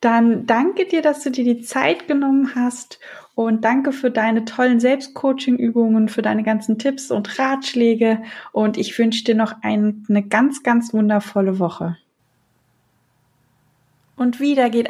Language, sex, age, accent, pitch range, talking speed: German, female, 20-39, German, 200-240 Hz, 140 wpm